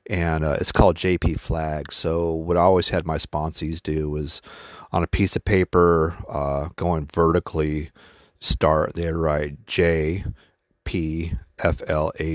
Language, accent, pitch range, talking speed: English, American, 80-95 Hz, 150 wpm